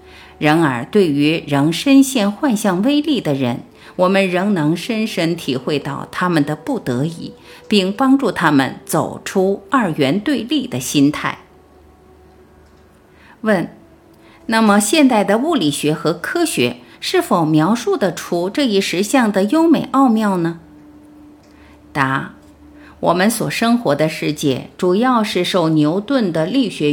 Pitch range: 145-225 Hz